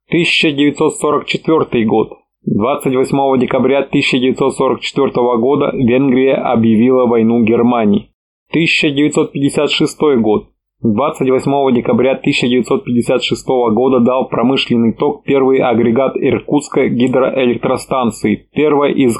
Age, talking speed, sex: 20-39, 80 wpm, male